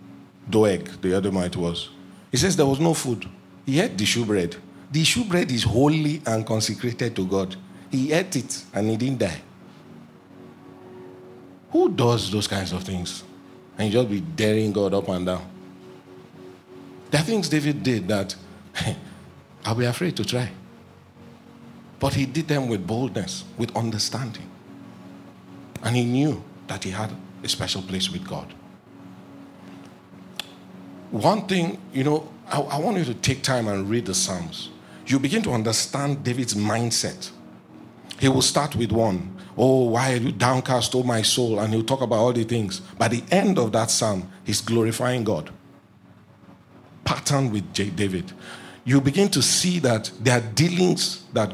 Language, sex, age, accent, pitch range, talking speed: English, male, 50-69, Nigerian, 95-135 Hz, 165 wpm